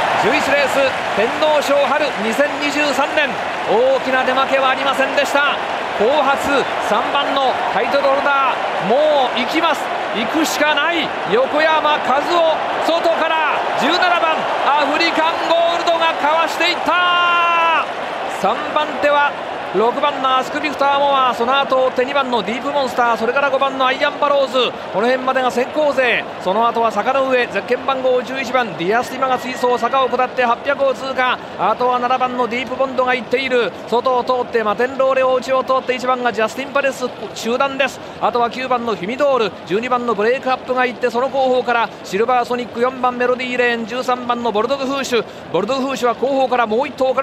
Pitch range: 245-280 Hz